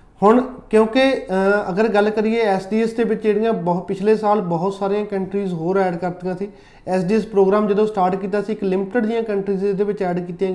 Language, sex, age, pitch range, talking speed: Punjabi, male, 30-49, 190-220 Hz, 195 wpm